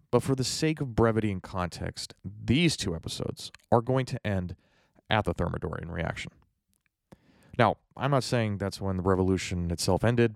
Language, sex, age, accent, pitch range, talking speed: English, male, 30-49, American, 85-115 Hz, 160 wpm